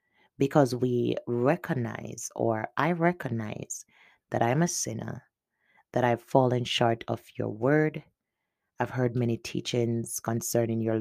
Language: English